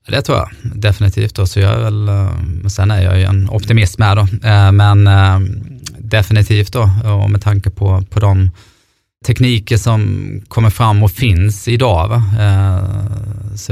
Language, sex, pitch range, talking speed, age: Swedish, male, 100-115 Hz, 160 wpm, 20-39